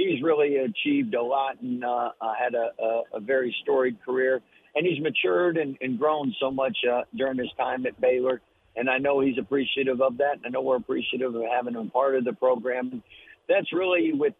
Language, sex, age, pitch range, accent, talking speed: English, male, 50-69, 125-150 Hz, American, 210 wpm